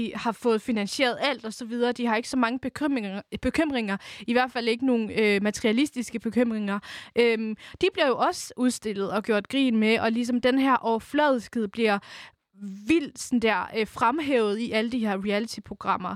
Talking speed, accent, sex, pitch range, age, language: 170 wpm, native, female, 215-260 Hz, 20-39, Danish